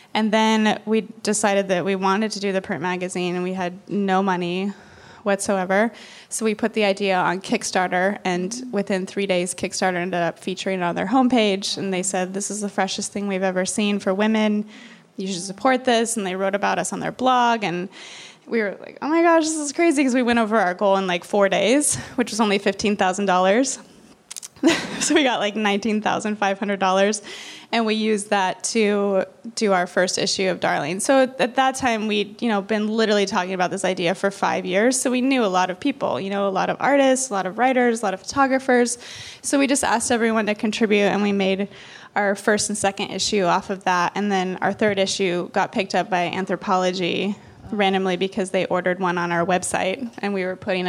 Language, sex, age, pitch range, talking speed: English, female, 20-39, 185-225 Hz, 210 wpm